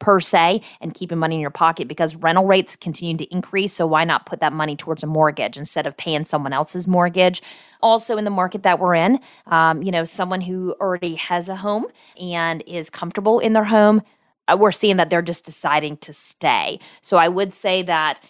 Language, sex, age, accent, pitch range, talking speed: English, female, 30-49, American, 160-195 Hz, 210 wpm